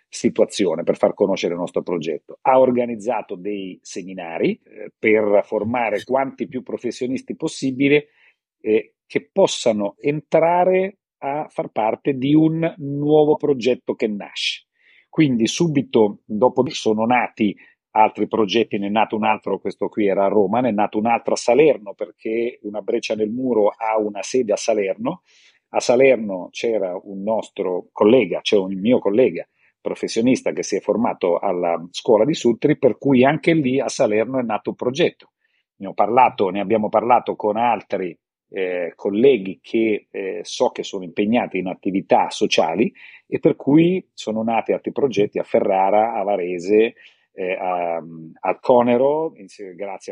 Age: 40-59